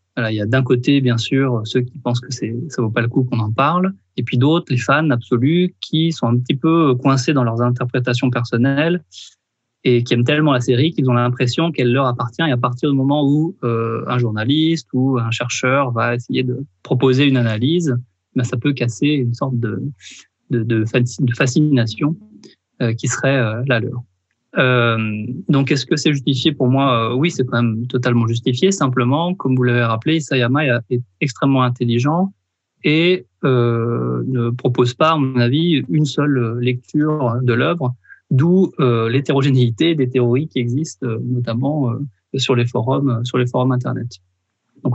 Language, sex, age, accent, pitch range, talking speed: French, male, 20-39, French, 120-145 Hz, 185 wpm